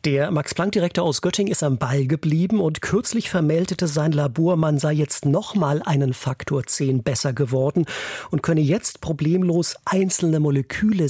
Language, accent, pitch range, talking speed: German, German, 145-180 Hz, 150 wpm